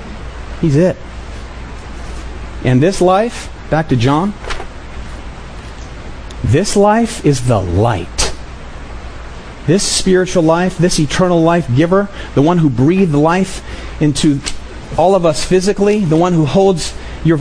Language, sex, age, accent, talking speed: English, male, 40-59, American, 120 wpm